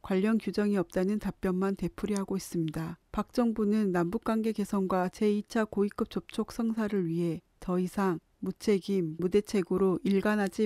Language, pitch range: Korean, 185-220 Hz